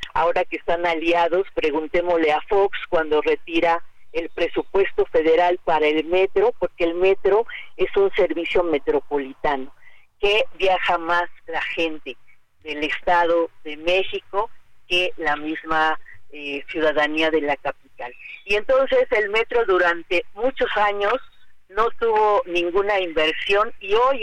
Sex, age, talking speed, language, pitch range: female, 40-59, 130 wpm, Spanish, 170-215 Hz